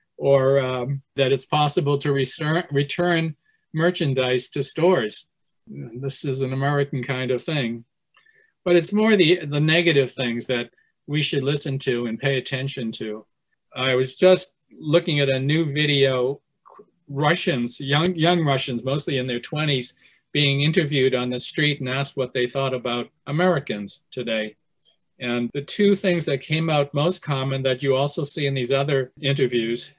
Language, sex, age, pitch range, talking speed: English, male, 40-59, 130-160 Hz, 160 wpm